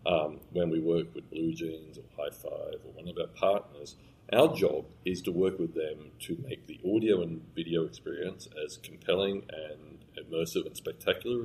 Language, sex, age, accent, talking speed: English, male, 40-59, Australian, 185 wpm